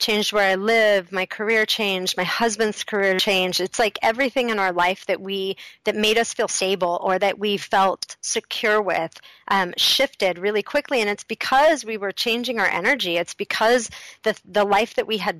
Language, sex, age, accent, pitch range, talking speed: English, female, 30-49, American, 195-235 Hz, 195 wpm